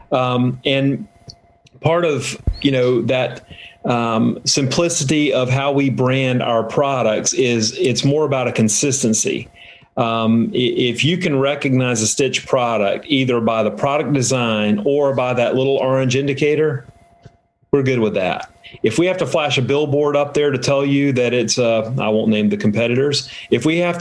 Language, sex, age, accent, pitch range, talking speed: English, male, 40-59, American, 115-140 Hz, 165 wpm